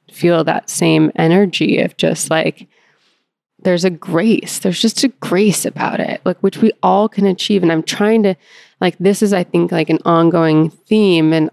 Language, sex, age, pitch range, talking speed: English, female, 20-39, 165-200 Hz, 185 wpm